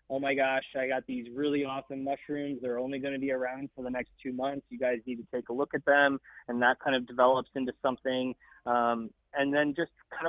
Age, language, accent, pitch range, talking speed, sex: 20-39, English, American, 125-145 Hz, 240 wpm, male